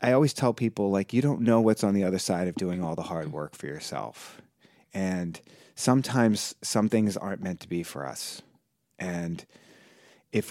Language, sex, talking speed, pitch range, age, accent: English, male, 190 wpm, 85-110 Hz, 30-49, American